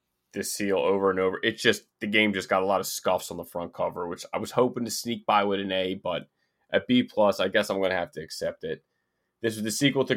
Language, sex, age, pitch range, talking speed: English, male, 20-39, 95-115 Hz, 270 wpm